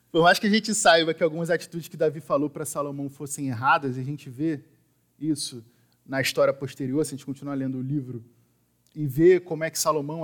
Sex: male